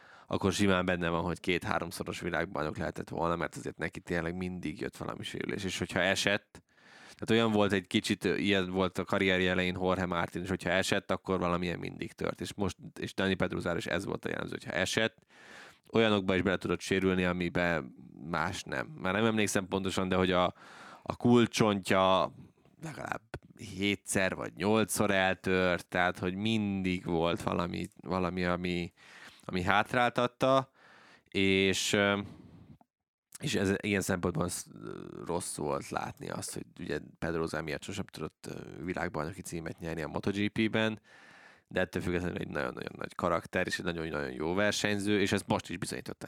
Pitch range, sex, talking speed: 90-100 Hz, male, 155 wpm